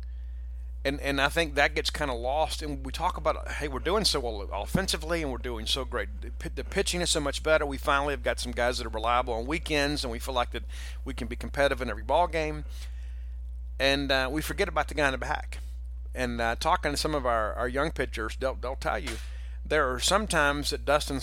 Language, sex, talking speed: English, male, 235 wpm